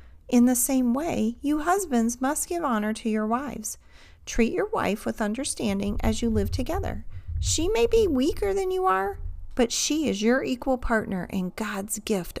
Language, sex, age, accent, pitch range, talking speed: English, female, 40-59, American, 190-270 Hz, 180 wpm